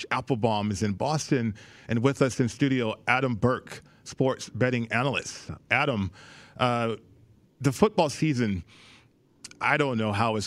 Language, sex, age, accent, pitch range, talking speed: English, male, 40-59, American, 110-140 Hz, 140 wpm